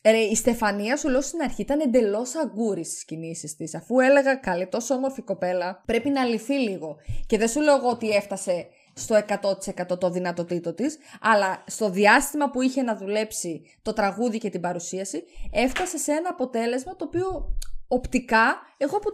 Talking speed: 170 wpm